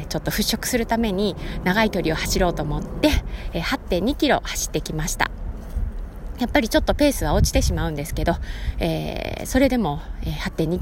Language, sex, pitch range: Japanese, female, 155-255 Hz